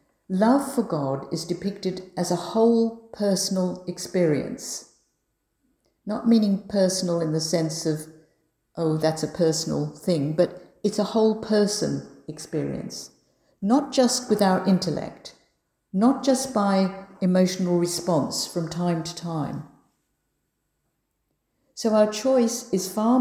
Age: 60-79